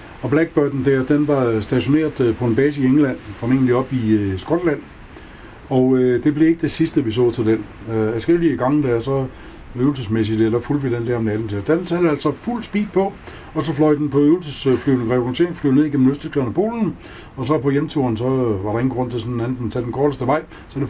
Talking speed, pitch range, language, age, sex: 235 wpm, 110-145 Hz, Danish, 60-79, male